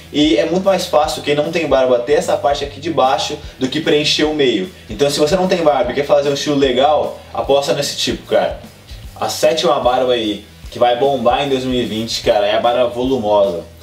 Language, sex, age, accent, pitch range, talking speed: Portuguese, male, 20-39, Brazilian, 130-155 Hz, 215 wpm